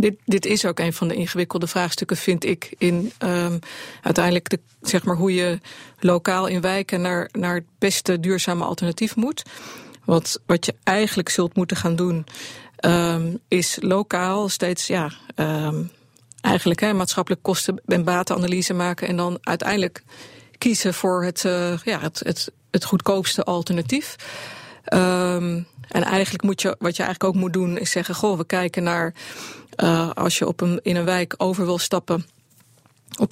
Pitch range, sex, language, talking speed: 175-195 Hz, female, Dutch, 145 wpm